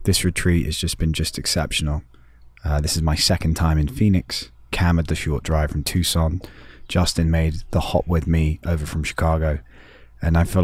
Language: English